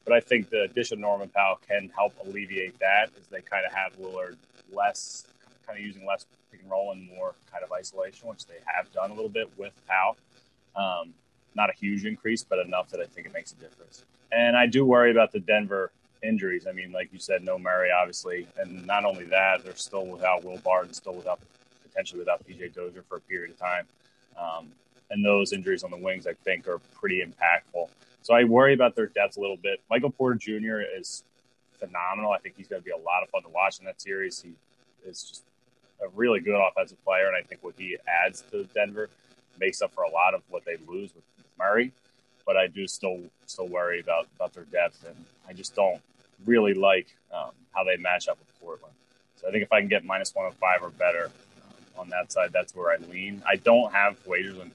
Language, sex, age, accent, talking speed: English, male, 20-39, American, 230 wpm